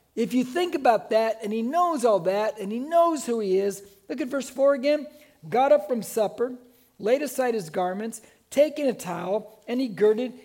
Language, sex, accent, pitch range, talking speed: English, male, American, 210-265 Hz, 200 wpm